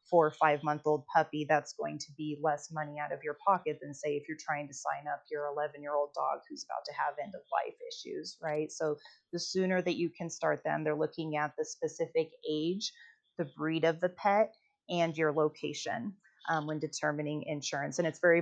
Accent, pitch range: American, 150-175 Hz